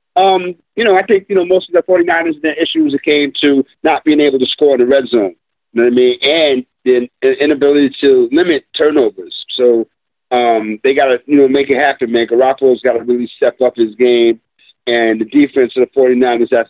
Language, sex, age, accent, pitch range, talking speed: English, male, 40-59, American, 120-155 Hz, 225 wpm